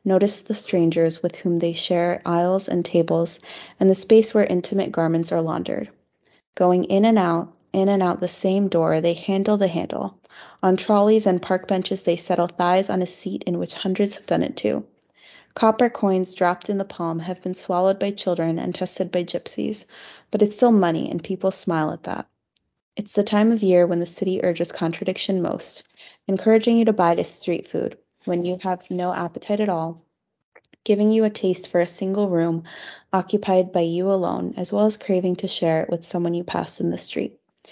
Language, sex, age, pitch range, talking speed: English, female, 20-39, 175-200 Hz, 200 wpm